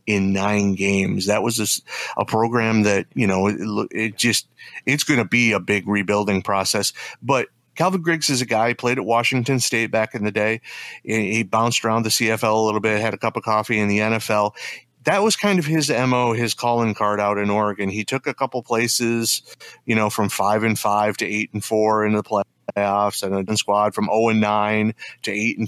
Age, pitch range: 30-49, 105-120 Hz